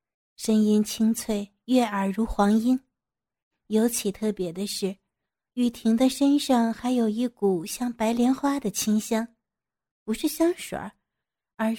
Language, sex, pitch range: Chinese, female, 200-235 Hz